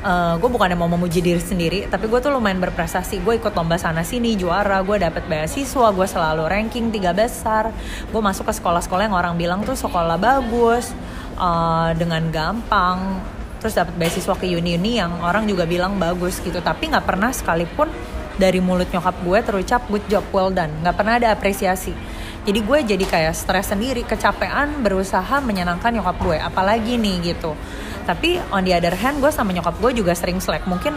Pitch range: 170-215 Hz